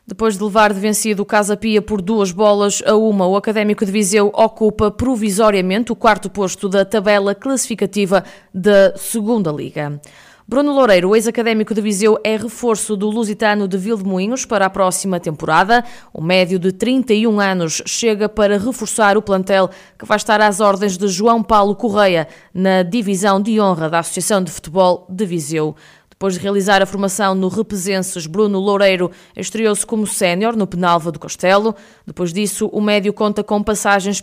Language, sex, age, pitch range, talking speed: Portuguese, female, 20-39, 190-220 Hz, 165 wpm